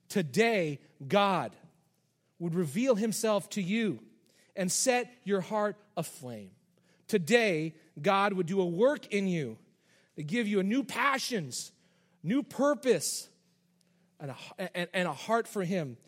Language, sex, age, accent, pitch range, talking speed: English, male, 40-59, American, 145-190 Hz, 130 wpm